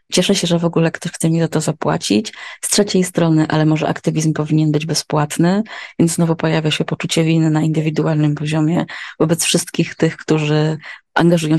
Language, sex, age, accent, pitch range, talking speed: Polish, female, 20-39, native, 155-175 Hz, 175 wpm